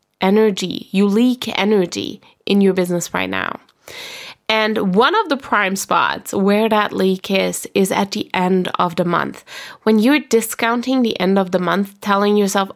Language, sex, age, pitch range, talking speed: English, female, 20-39, 190-240 Hz, 170 wpm